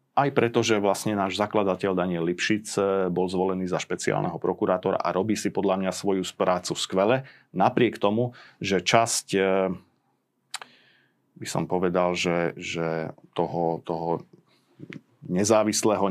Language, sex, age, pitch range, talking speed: Slovak, male, 40-59, 95-110 Hz, 120 wpm